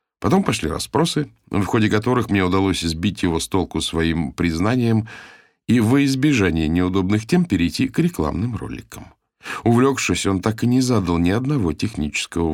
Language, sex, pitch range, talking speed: Russian, male, 85-110 Hz, 155 wpm